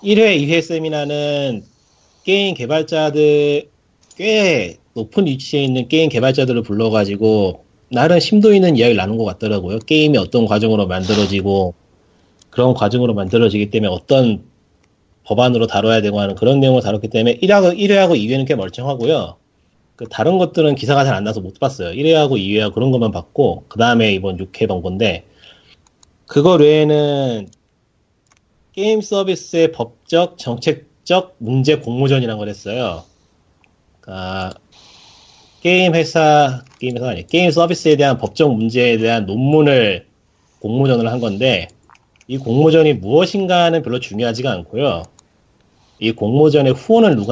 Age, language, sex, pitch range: 30-49, Korean, male, 110-155 Hz